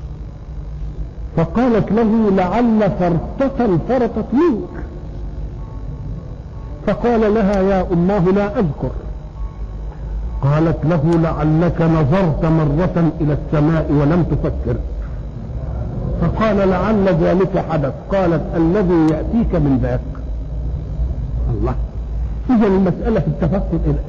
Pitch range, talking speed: 155-200 Hz, 90 wpm